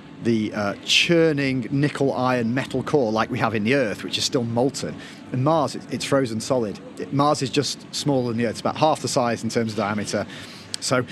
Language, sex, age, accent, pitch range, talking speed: English, male, 30-49, British, 115-145 Hz, 205 wpm